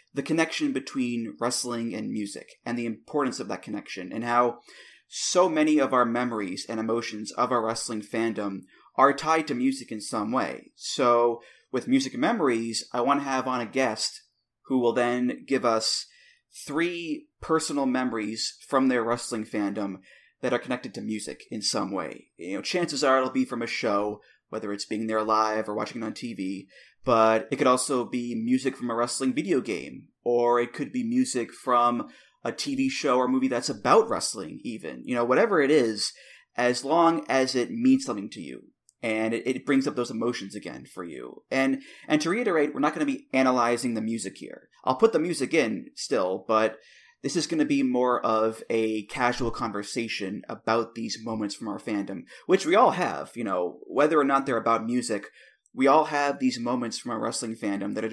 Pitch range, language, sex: 110-140 Hz, English, male